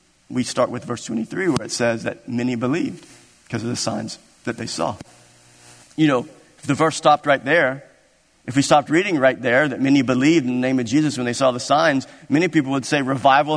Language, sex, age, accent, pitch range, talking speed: English, male, 50-69, American, 115-155 Hz, 220 wpm